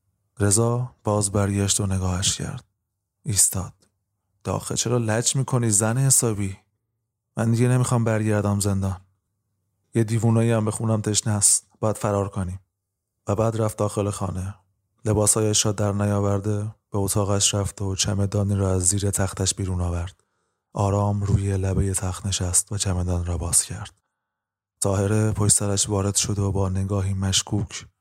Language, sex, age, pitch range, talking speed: Persian, male, 20-39, 95-110 Hz, 145 wpm